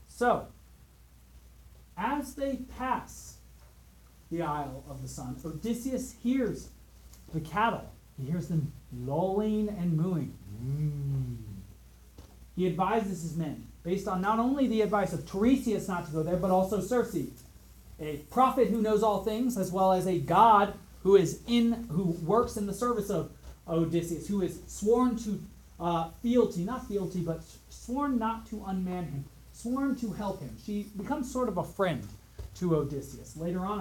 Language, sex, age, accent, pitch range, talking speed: English, male, 30-49, American, 155-230 Hz, 155 wpm